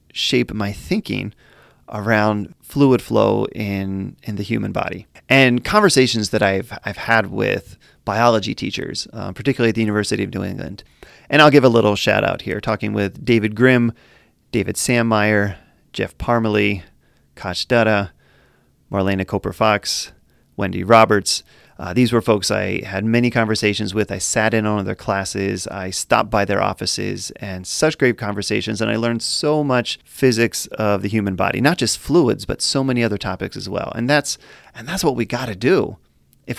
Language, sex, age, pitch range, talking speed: English, male, 30-49, 100-125 Hz, 170 wpm